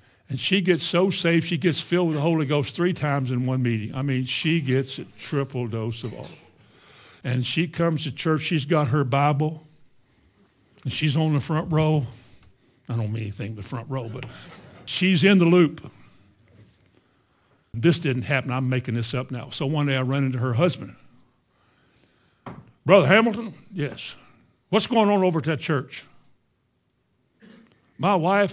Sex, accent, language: male, American, English